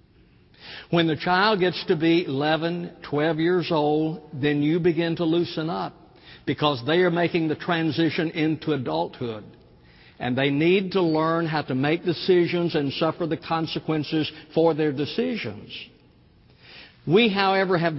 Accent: American